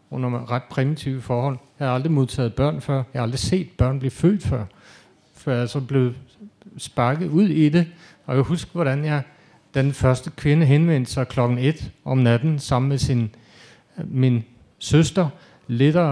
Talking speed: 170 wpm